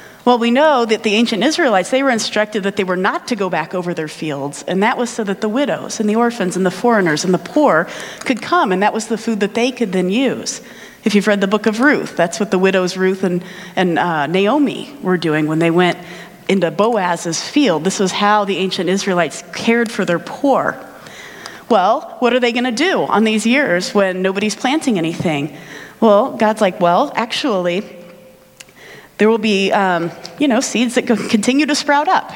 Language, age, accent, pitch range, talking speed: English, 30-49, American, 185-245 Hz, 210 wpm